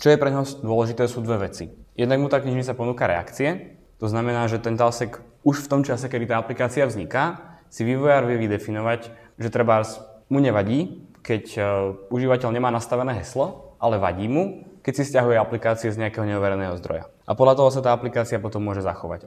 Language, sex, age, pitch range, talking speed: Czech, male, 20-39, 100-120 Hz, 190 wpm